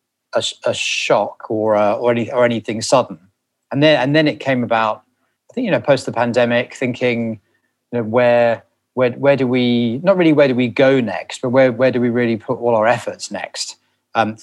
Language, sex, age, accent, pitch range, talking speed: English, male, 30-49, British, 110-125 Hz, 210 wpm